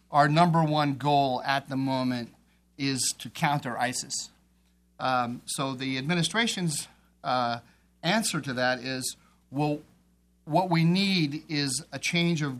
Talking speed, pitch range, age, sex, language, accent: 135 wpm, 130-155 Hz, 40-59, male, English, American